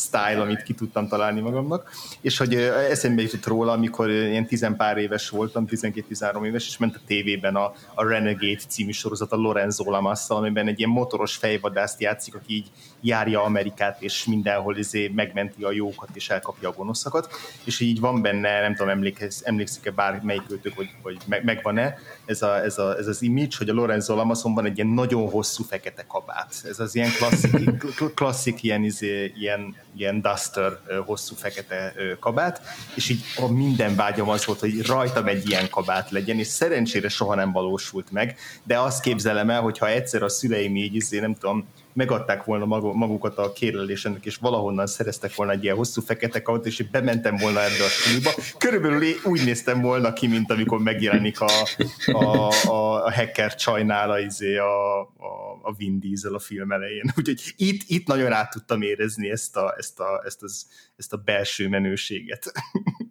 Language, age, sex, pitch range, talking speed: Hungarian, 30-49, male, 100-120 Hz, 175 wpm